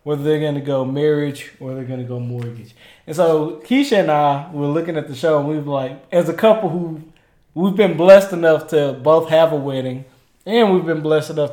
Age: 20-39